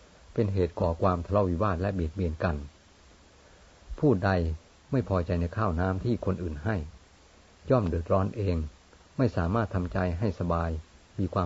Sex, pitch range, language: male, 85-100 Hz, Thai